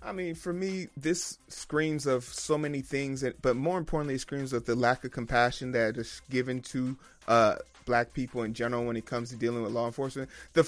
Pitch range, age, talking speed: 125-155 Hz, 30-49, 215 wpm